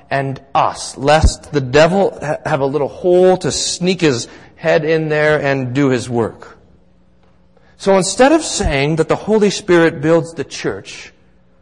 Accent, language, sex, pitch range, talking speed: American, English, male, 125-175 Hz, 160 wpm